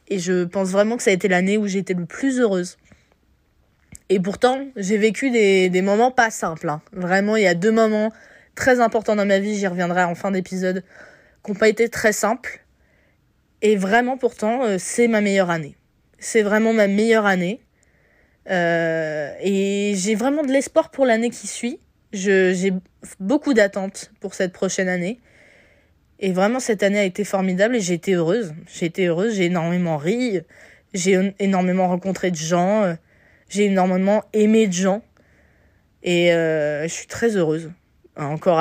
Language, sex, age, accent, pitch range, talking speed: French, female, 20-39, French, 175-220 Hz, 170 wpm